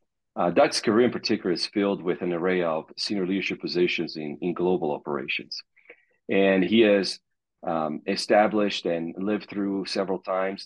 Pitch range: 85-100 Hz